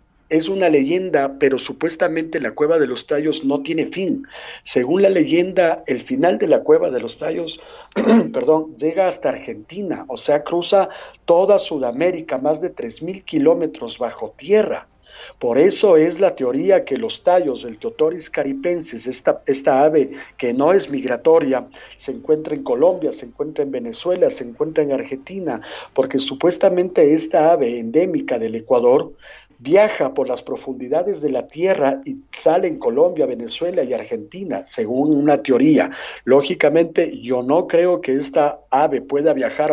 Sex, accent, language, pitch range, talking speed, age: male, Mexican, Spanish, 145-195 Hz, 155 wpm, 50-69